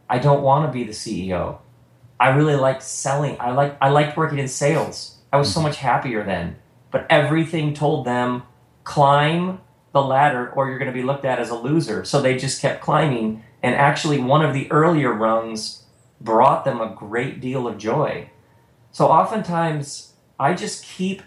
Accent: American